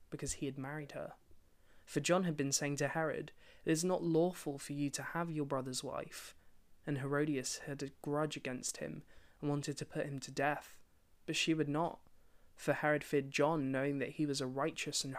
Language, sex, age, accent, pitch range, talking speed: English, male, 20-39, British, 130-155 Hz, 205 wpm